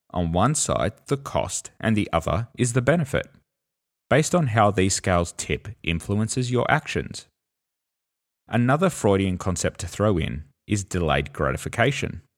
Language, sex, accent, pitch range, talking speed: English, male, Australian, 80-110 Hz, 140 wpm